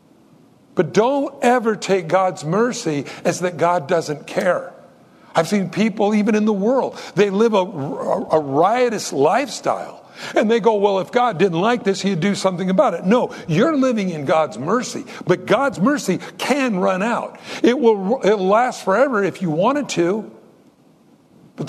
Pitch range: 170-230 Hz